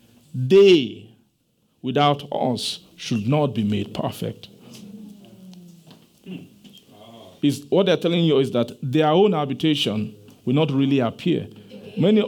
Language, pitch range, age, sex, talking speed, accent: English, 135-180 Hz, 50-69, male, 110 wpm, Nigerian